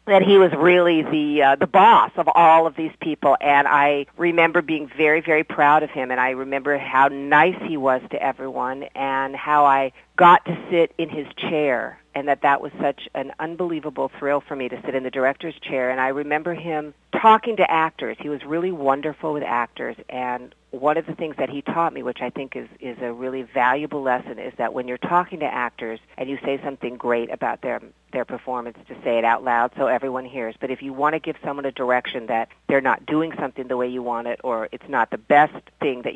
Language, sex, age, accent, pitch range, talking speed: English, female, 50-69, American, 125-155 Hz, 225 wpm